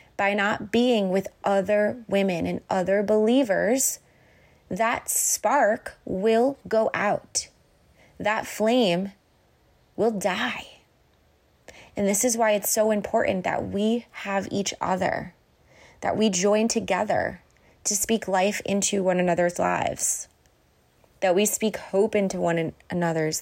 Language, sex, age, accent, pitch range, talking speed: English, female, 20-39, American, 180-215 Hz, 125 wpm